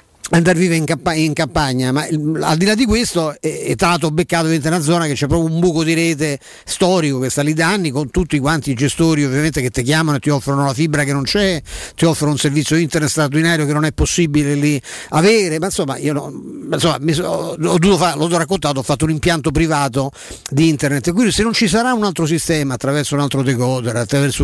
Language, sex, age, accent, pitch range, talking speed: Italian, male, 50-69, native, 145-175 Hz, 230 wpm